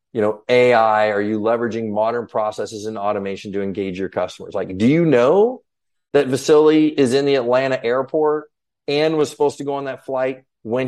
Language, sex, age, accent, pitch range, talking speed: English, male, 30-49, American, 110-135 Hz, 190 wpm